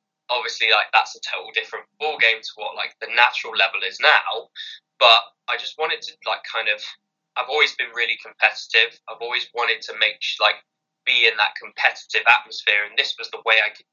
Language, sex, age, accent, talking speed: English, male, 10-29, British, 200 wpm